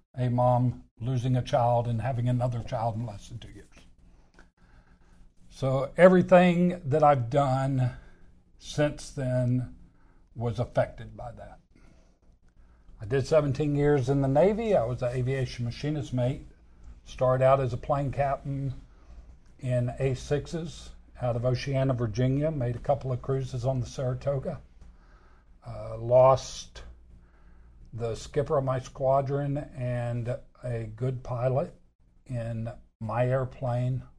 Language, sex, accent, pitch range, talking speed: English, male, American, 100-130 Hz, 125 wpm